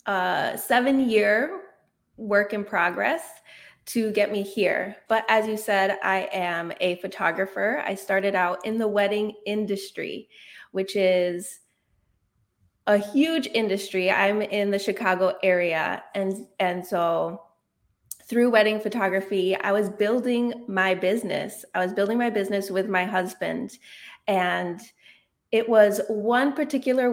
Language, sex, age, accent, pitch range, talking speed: English, female, 20-39, American, 190-230 Hz, 130 wpm